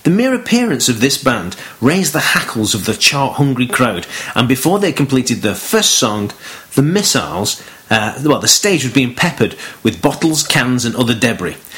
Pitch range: 125-160 Hz